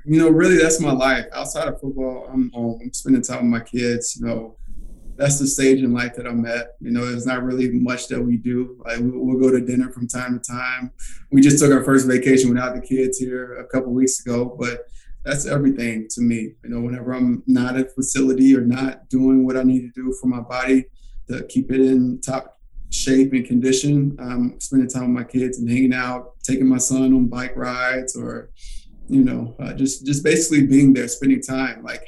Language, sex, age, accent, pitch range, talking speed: English, male, 20-39, American, 125-135 Hz, 215 wpm